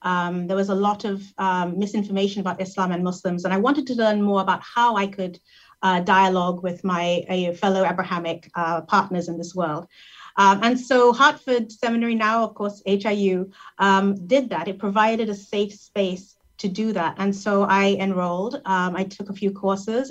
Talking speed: 190 wpm